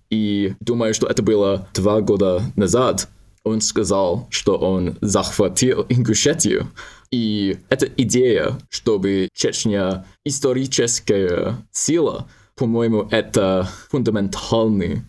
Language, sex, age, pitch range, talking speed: Russian, male, 20-39, 95-115 Hz, 95 wpm